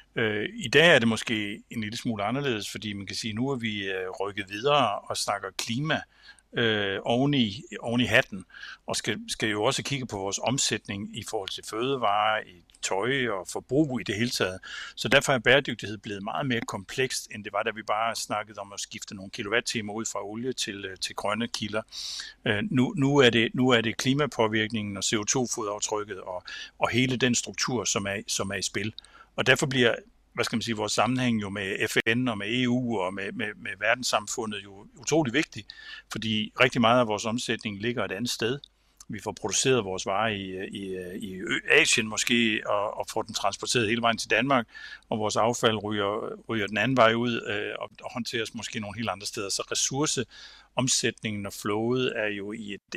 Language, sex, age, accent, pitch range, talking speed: Danish, male, 60-79, native, 105-125 Hz, 195 wpm